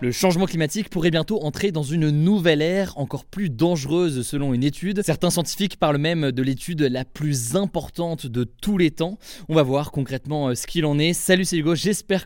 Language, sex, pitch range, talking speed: French, male, 135-175 Hz, 200 wpm